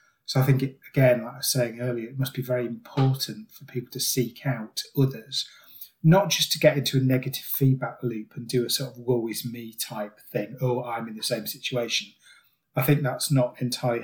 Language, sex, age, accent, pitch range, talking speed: English, male, 30-49, British, 120-135 Hz, 215 wpm